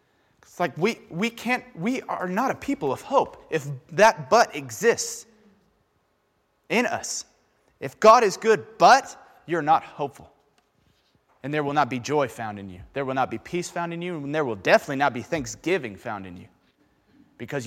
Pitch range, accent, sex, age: 145-210 Hz, American, male, 30-49